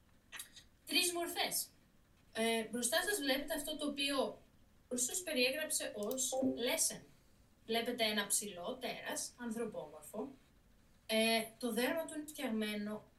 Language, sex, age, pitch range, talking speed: Greek, female, 20-39, 220-275 Hz, 100 wpm